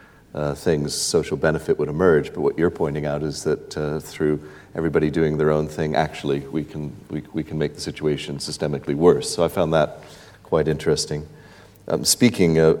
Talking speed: 185 wpm